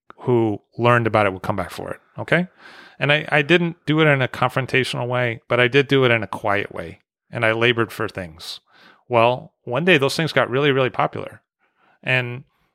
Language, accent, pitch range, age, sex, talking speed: English, American, 115-145 Hz, 30-49, male, 205 wpm